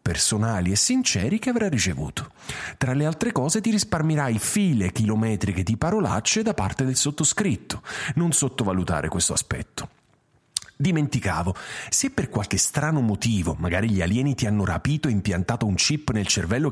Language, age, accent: Italian, 40-59, native